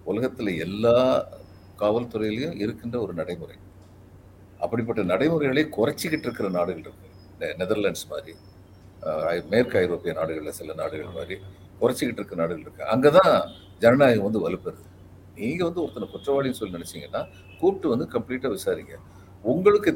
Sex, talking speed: male, 120 wpm